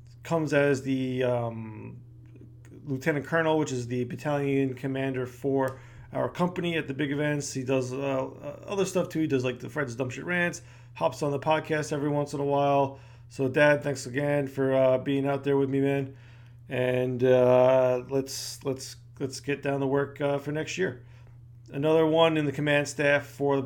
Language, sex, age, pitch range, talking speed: English, male, 40-59, 125-145 Hz, 190 wpm